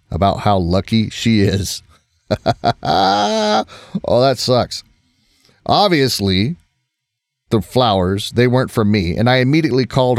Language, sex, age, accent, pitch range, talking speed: English, male, 30-49, American, 95-125 Hz, 110 wpm